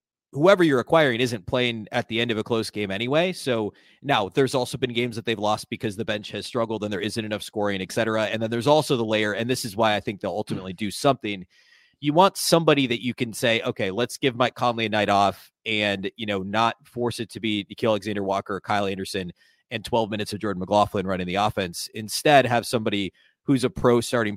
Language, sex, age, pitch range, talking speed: English, male, 30-49, 105-130 Hz, 230 wpm